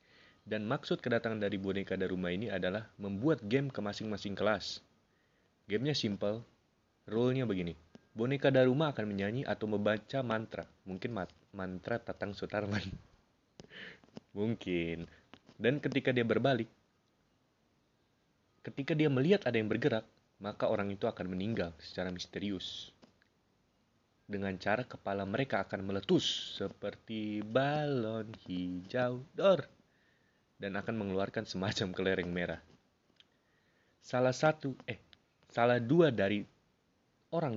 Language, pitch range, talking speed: Indonesian, 95-120 Hz, 110 wpm